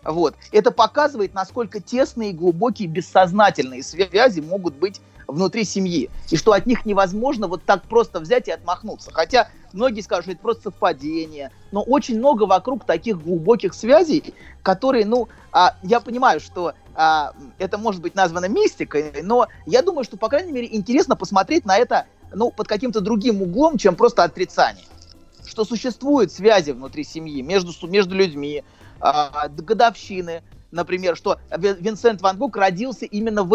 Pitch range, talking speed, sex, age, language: 160-230 Hz, 150 wpm, male, 30-49, Russian